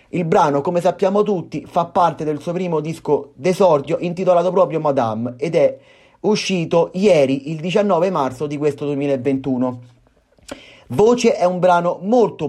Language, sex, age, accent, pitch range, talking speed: Italian, male, 30-49, native, 145-180 Hz, 145 wpm